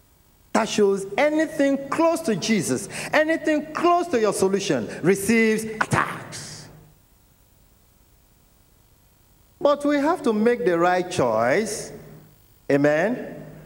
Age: 50-69